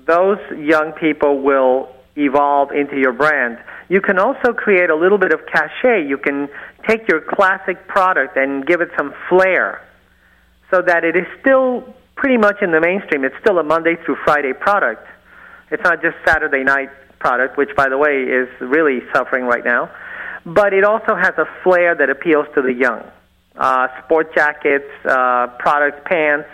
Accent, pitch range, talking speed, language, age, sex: American, 140-180 Hz, 175 wpm, English, 40-59, male